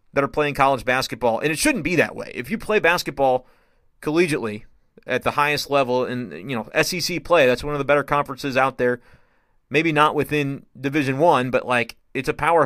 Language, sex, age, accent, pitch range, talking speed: English, male, 30-49, American, 130-155 Hz, 205 wpm